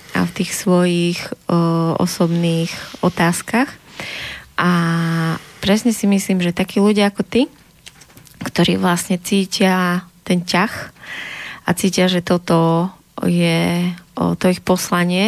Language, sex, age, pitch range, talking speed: Slovak, female, 20-39, 175-190 Hz, 120 wpm